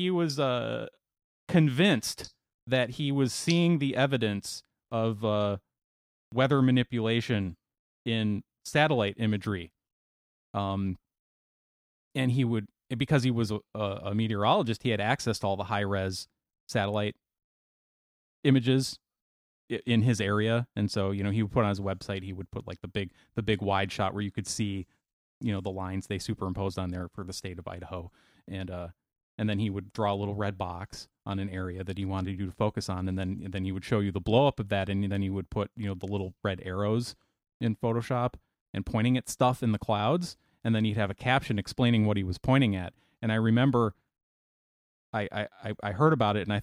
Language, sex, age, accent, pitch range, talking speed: English, male, 30-49, American, 95-120 Hz, 200 wpm